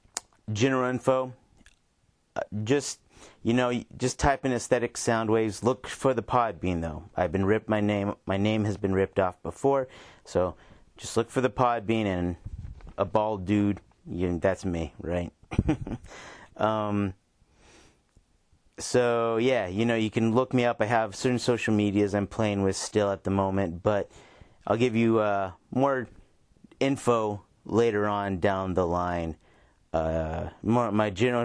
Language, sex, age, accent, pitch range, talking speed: English, male, 30-49, American, 95-115 Hz, 160 wpm